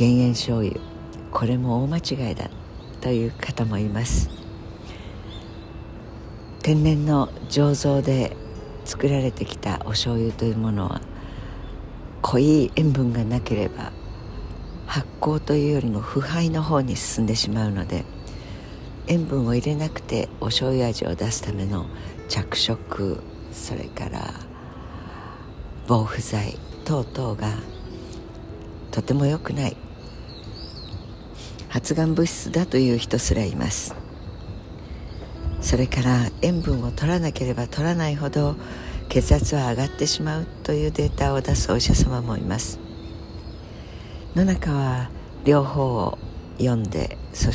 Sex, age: female, 60-79